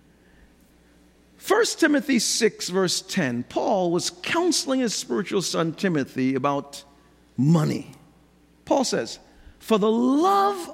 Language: English